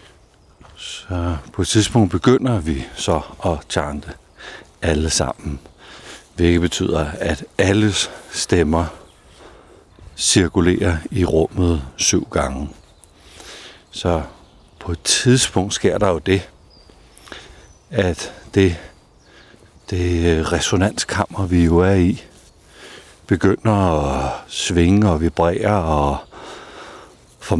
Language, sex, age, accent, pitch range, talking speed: Danish, male, 60-79, native, 85-105 Hz, 95 wpm